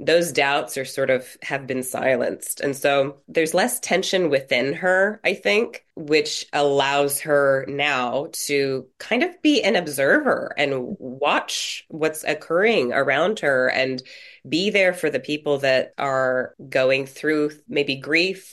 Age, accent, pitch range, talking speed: 20-39, American, 135-170 Hz, 145 wpm